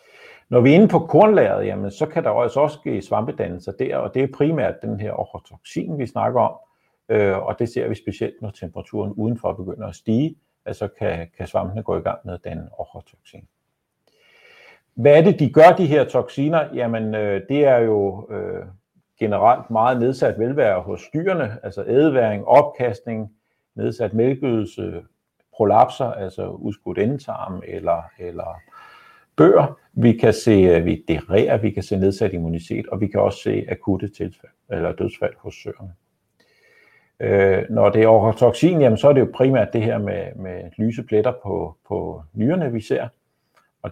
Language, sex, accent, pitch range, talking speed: Danish, male, native, 100-140 Hz, 155 wpm